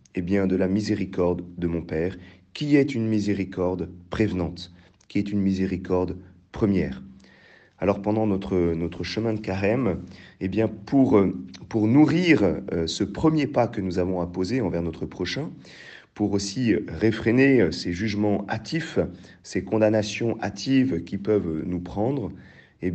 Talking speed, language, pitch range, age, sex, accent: 145 wpm, French, 90-105 Hz, 40-59, male, French